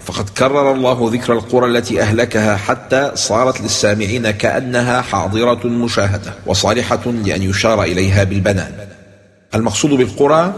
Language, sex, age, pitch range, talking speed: English, male, 40-59, 100-130 Hz, 115 wpm